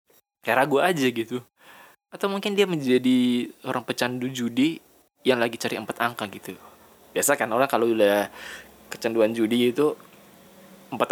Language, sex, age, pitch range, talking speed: Indonesian, male, 20-39, 120-160 Hz, 135 wpm